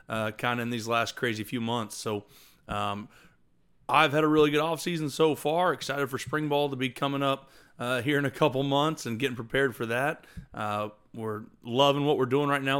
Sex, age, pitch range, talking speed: male, 30-49, 110-150 Hz, 220 wpm